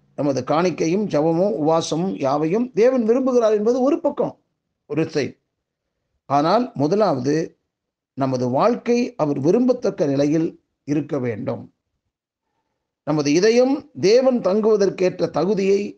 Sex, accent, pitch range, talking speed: male, native, 160-230 Hz, 95 wpm